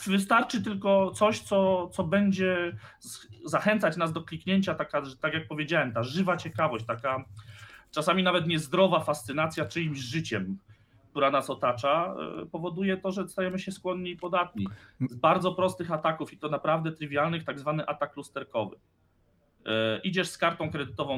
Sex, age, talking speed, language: male, 30-49, 140 wpm, Polish